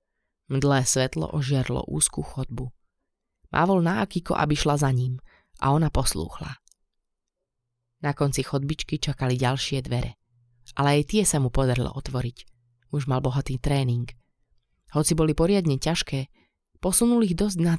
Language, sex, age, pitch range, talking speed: Slovak, female, 20-39, 130-160 Hz, 135 wpm